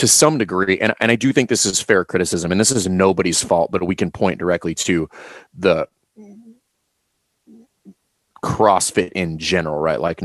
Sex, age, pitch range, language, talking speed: male, 30-49, 90-120 Hz, English, 170 wpm